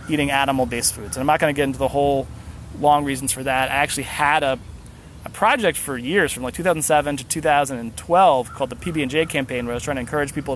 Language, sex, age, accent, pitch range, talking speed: English, male, 20-39, American, 125-160 Hz, 225 wpm